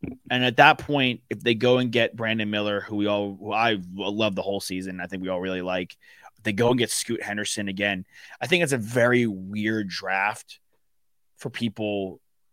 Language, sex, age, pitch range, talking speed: English, male, 20-39, 95-110 Hz, 195 wpm